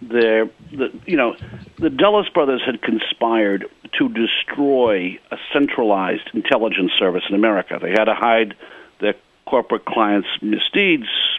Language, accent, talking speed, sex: English, American, 125 wpm, male